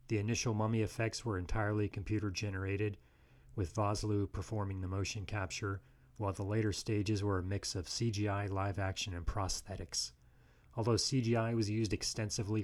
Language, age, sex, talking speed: English, 30-49, male, 145 wpm